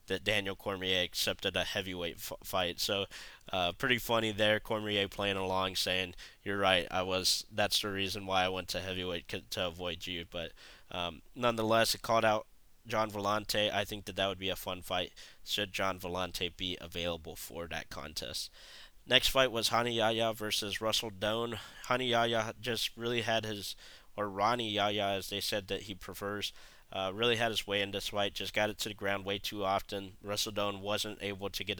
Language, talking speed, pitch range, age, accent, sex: English, 195 wpm, 95-110 Hz, 20-39, American, male